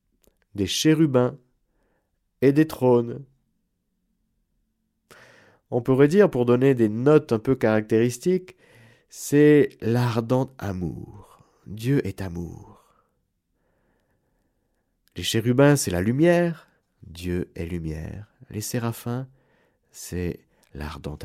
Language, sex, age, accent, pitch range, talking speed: French, male, 50-69, French, 95-140 Hz, 95 wpm